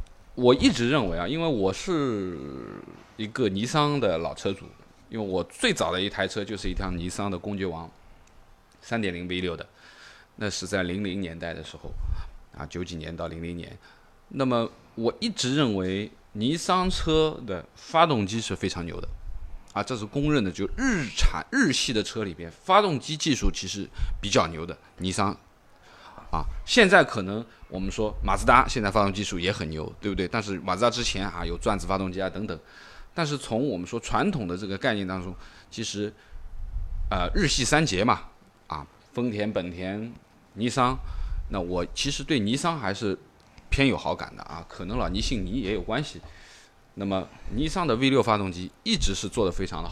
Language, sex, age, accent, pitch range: Chinese, male, 20-39, native, 90-115 Hz